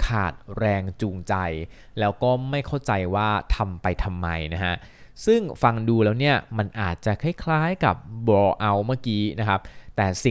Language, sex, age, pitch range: Thai, male, 20-39, 100-135 Hz